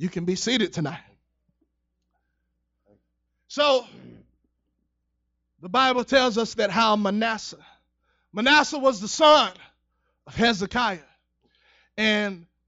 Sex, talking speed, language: male, 95 wpm, English